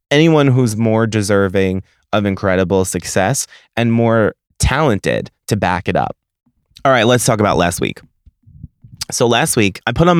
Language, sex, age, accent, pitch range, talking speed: English, male, 20-39, American, 105-140 Hz, 160 wpm